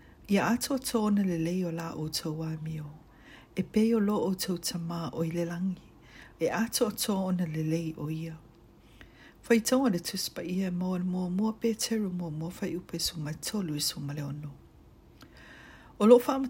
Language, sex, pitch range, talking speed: English, female, 165-220 Hz, 195 wpm